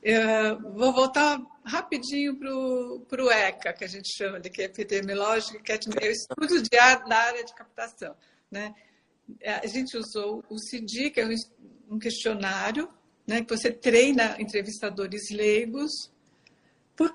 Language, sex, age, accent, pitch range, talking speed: Portuguese, female, 50-69, Brazilian, 215-250 Hz, 140 wpm